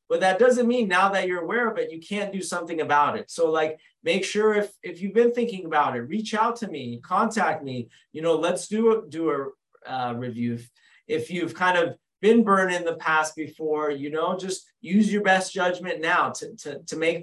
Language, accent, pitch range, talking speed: English, American, 155-195 Hz, 225 wpm